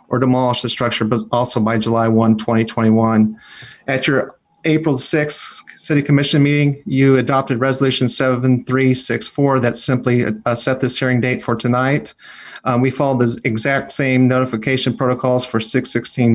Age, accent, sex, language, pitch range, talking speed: 30-49, American, male, English, 120-135 Hz, 145 wpm